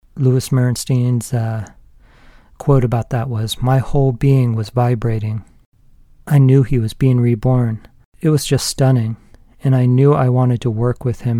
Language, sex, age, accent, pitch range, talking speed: English, male, 40-59, American, 115-135 Hz, 165 wpm